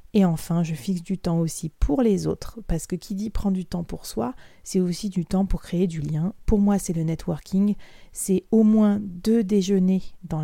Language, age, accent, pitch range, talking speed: French, 30-49, French, 165-205 Hz, 220 wpm